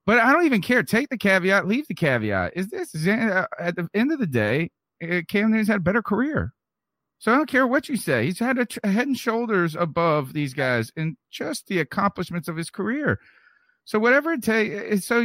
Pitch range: 120-200 Hz